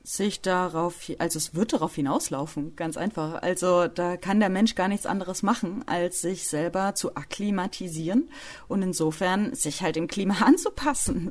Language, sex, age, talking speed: German, female, 30-49, 160 wpm